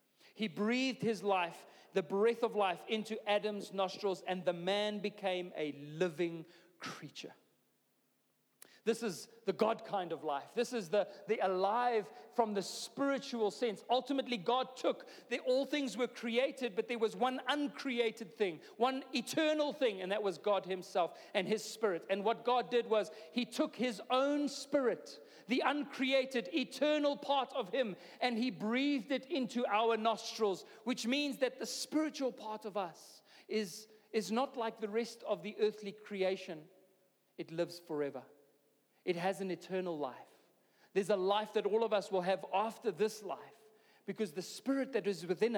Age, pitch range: 40-59, 195-245 Hz